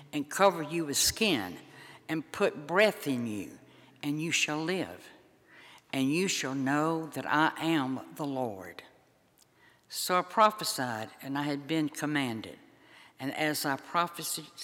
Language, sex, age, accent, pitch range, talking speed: English, female, 60-79, American, 130-165 Hz, 145 wpm